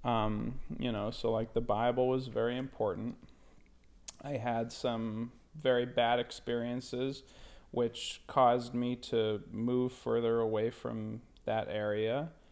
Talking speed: 125 wpm